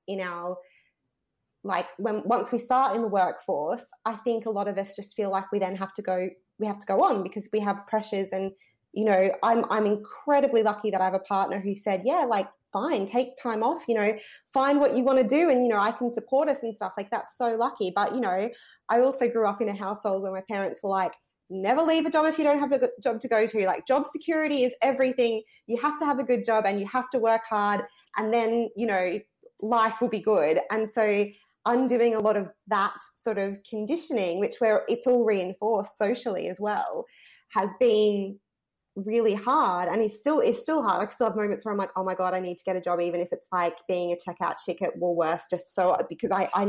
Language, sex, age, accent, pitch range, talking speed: English, female, 20-39, Australian, 195-245 Hz, 240 wpm